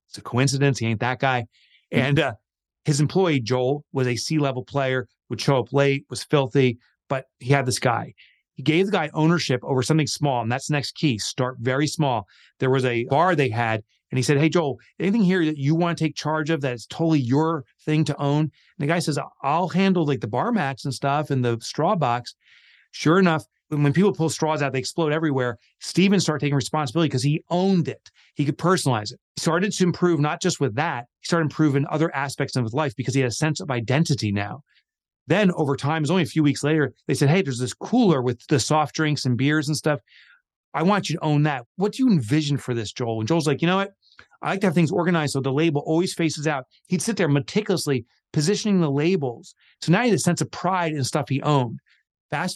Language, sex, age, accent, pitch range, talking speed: English, male, 30-49, American, 130-165 Hz, 235 wpm